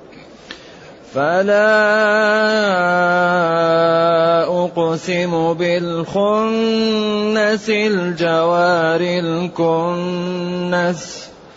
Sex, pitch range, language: male, 165-180 Hz, Arabic